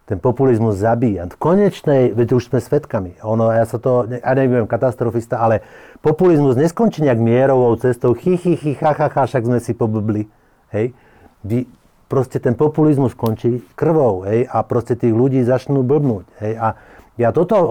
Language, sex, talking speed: Slovak, male, 155 wpm